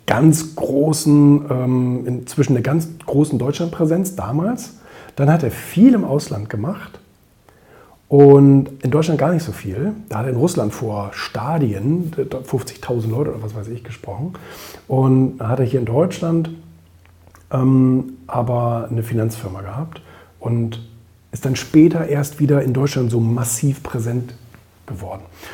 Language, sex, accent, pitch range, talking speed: German, male, German, 115-155 Hz, 140 wpm